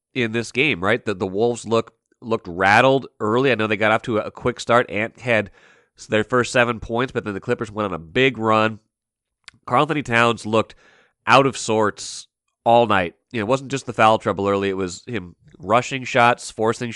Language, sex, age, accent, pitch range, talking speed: English, male, 30-49, American, 105-125 Hz, 210 wpm